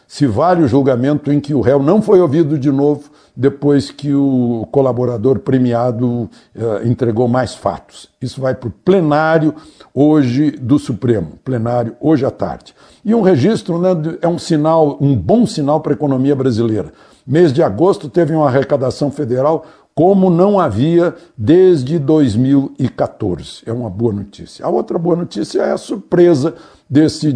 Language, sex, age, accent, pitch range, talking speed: Portuguese, male, 60-79, Brazilian, 130-170 Hz, 155 wpm